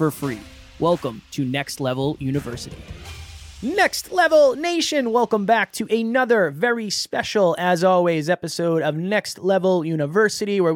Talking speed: 135 wpm